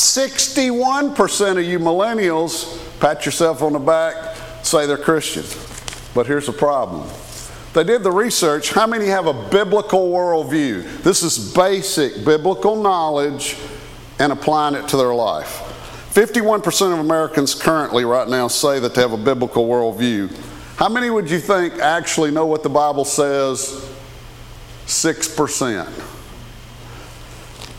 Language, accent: English, American